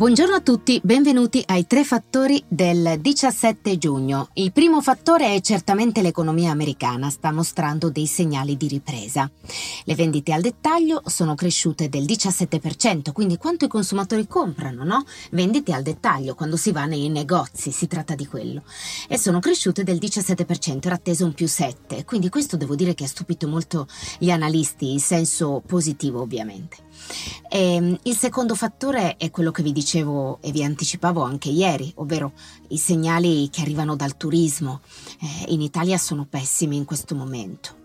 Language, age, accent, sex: Italian, 30-49, native, female